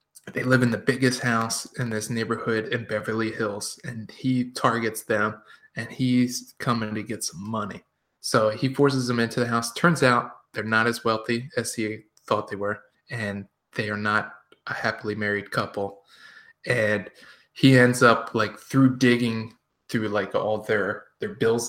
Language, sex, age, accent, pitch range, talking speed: English, male, 20-39, American, 110-125 Hz, 170 wpm